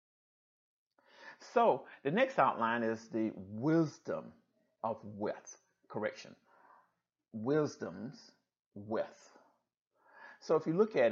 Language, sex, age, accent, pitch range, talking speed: English, male, 50-69, American, 110-175 Hz, 90 wpm